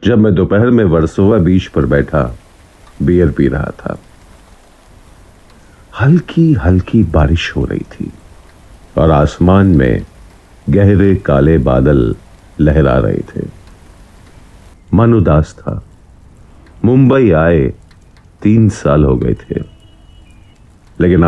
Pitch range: 80-105 Hz